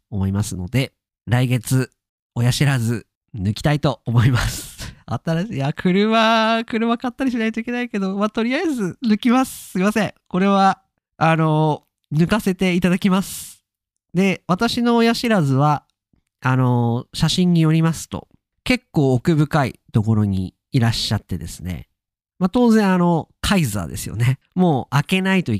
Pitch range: 115-190 Hz